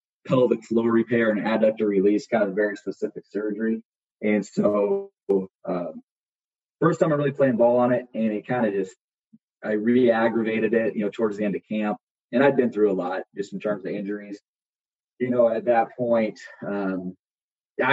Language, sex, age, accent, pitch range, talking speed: English, male, 20-39, American, 100-125 Hz, 185 wpm